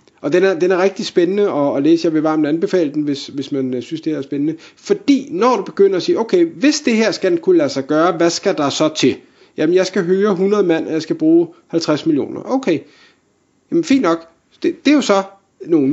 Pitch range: 160-260 Hz